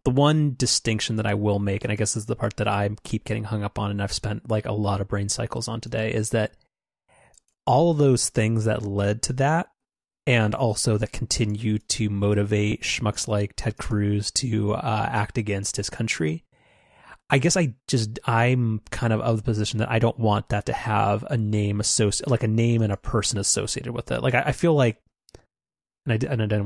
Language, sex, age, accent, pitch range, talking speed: English, male, 30-49, American, 105-120 Hz, 215 wpm